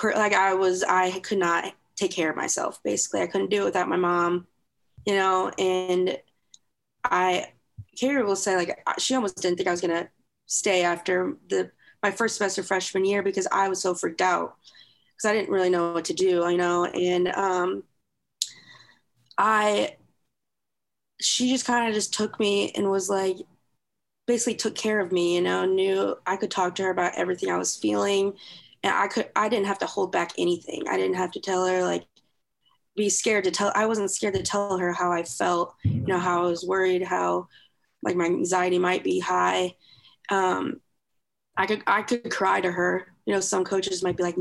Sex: female